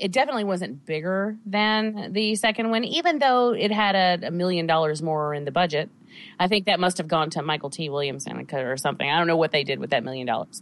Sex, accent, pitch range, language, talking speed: female, American, 160-210 Hz, English, 235 wpm